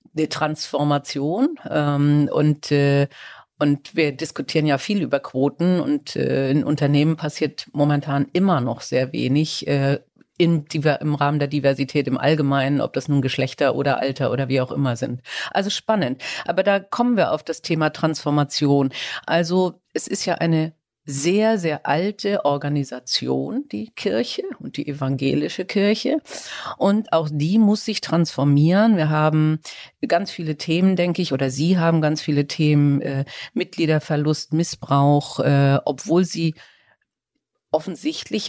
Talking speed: 135 wpm